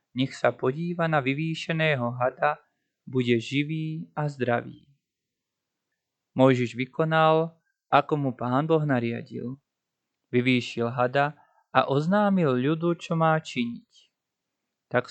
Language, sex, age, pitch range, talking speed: Slovak, male, 20-39, 125-160 Hz, 105 wpm